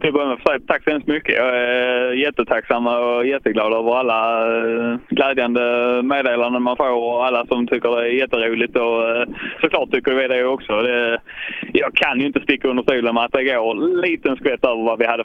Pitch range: 115-140 Hz